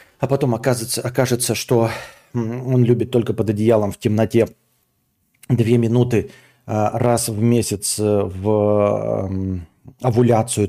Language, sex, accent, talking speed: Russian, male, native, 105 wpm